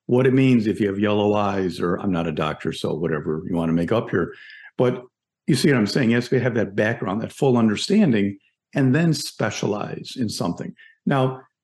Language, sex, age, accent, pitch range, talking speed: English, male, 50-69, American, 105-140 Hz, 210 wpm